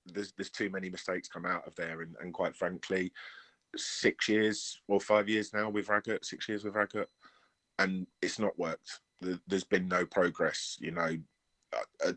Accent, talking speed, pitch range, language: British, 185 wpm, 90-100 Hz, English